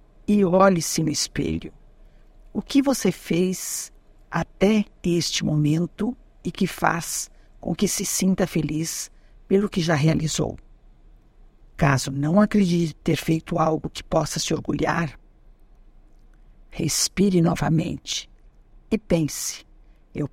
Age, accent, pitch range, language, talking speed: 60-79, Brazilian, 155-200 Hz, Portuguese, 110 wpm